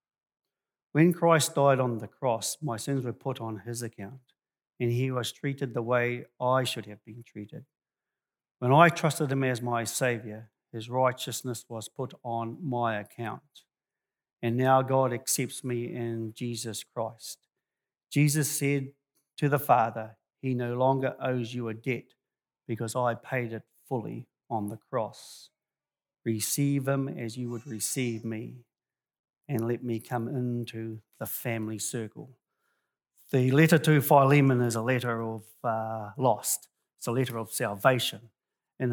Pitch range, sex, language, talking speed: 115-130 Hz, male, English, 150 wpm